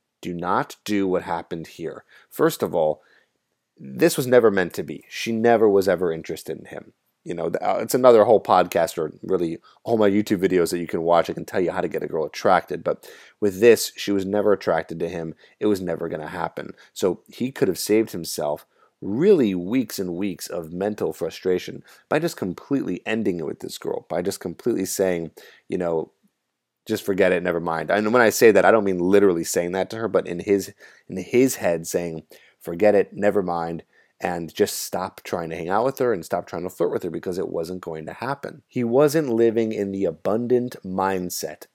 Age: 30-49